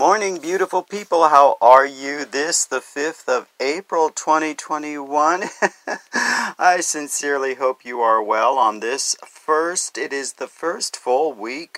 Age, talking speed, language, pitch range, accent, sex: 40-59, 140 wpm, English, 120-155 Hz, American, male